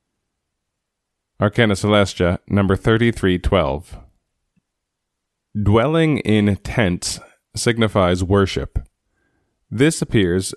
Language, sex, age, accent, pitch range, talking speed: English, male, 20-39, American, 95-110 Hz, 60 wpm